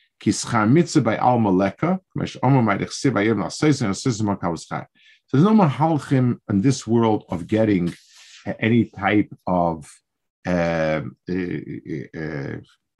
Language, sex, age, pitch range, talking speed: English, male, 50-69, 100-140 Hz, 70 wpm